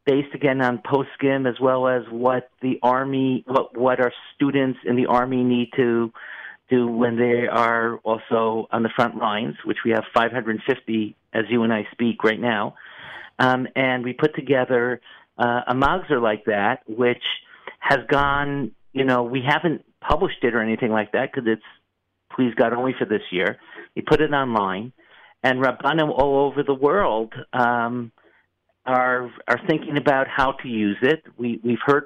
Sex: male